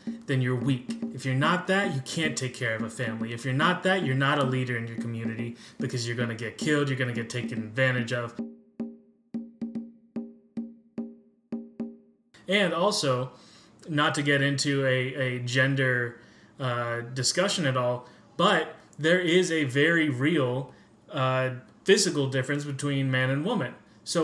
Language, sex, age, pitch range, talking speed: English, male, 20-39, 130-175 Hz, 160 wpm